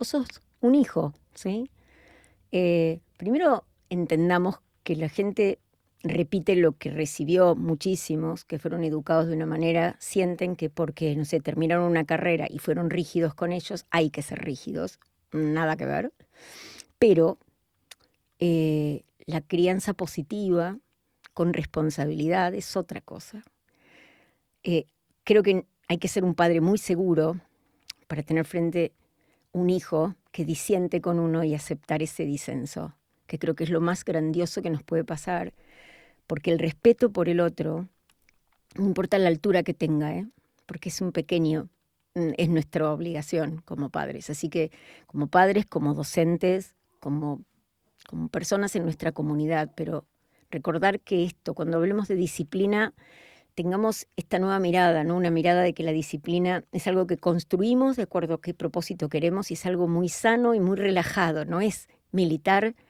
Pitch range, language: 160-185 Hz, Spanish